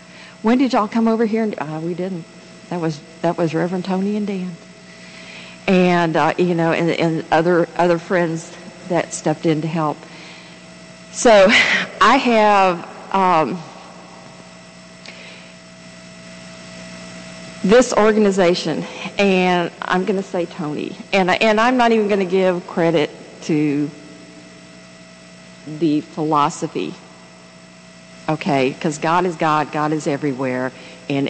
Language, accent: English, American